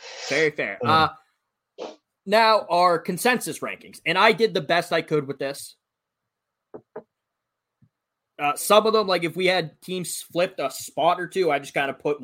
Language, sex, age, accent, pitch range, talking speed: English, male, 20-39, American, 150-190 Hz, 170 wpm